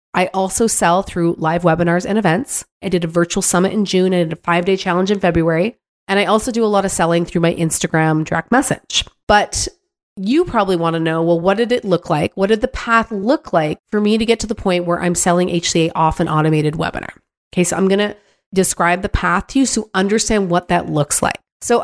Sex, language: female, English